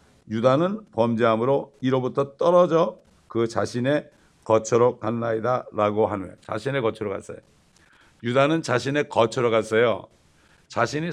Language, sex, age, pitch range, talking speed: English, male, 60-79, 105-130 Hz, 95 wpm